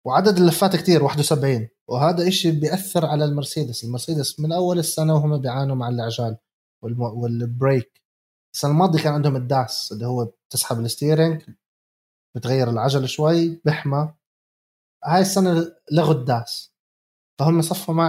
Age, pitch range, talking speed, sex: 20-39, 125-165 Hz, 125 wpm, male